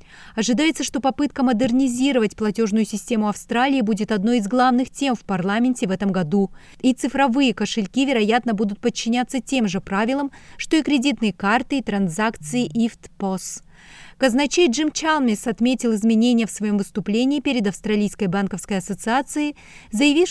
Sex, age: female, 30-49